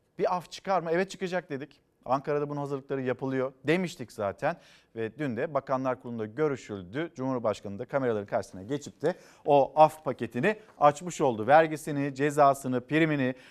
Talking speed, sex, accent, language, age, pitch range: 145 wpm, male, native, Turkish, 50-69, 130-175 Hz